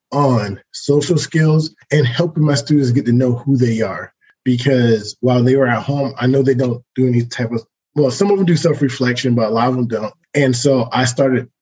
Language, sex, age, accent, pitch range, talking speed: English, male, 20-39, American, 120-150 Hz, 220 wpm